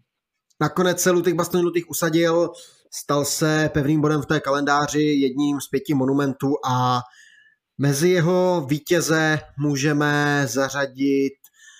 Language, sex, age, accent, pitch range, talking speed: Czech, male, 20-39, native, 140-155 Hz, 115 wpm